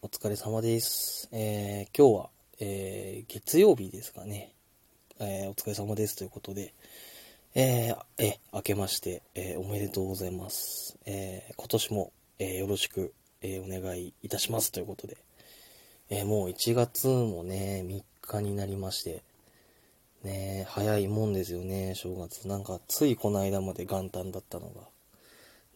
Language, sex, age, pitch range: Japanese, male, 20-39, 95-105 Hz